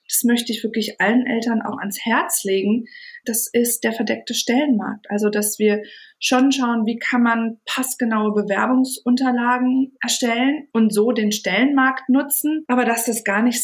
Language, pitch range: German, 220-260 Hz